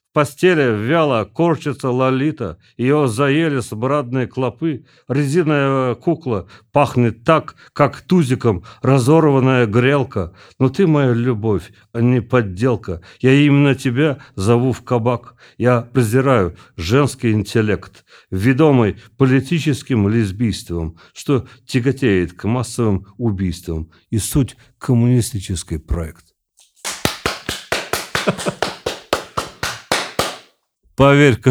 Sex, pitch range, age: male, 110-140 Hz, 50-69